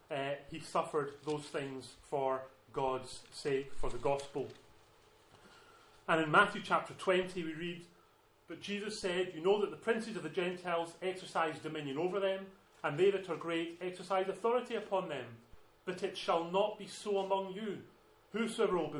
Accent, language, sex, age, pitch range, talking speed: British, English, male, 30-49, 140-185 Hz, 165 wpm